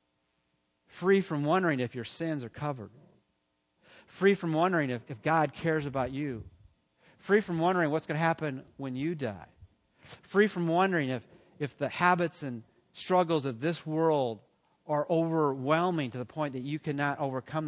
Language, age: English, 40-59